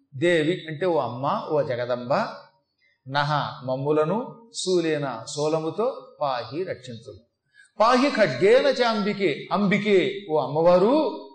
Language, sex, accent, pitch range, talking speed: Telugu, male, native, 160-215 Hz, 95 wpm